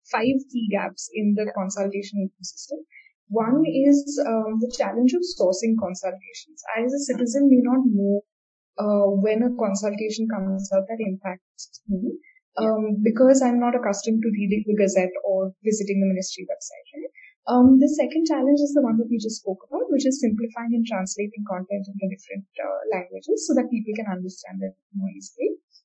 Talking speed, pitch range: 175 wpm, 210-275 Hz